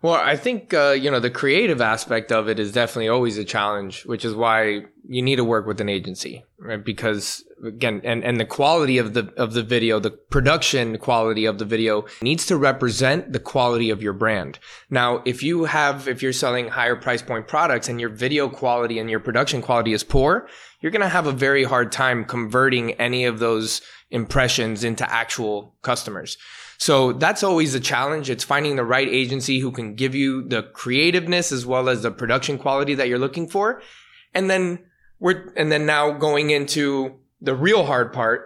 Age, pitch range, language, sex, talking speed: 20-39, 115-145 Hz, English, male, 200 wpm